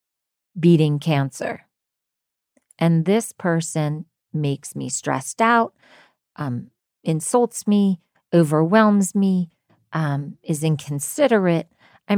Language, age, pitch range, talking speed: English, 40-59, 155-195 Hz, 90 wpm